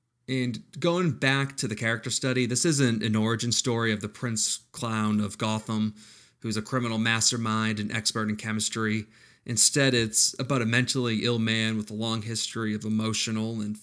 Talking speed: 175 wpm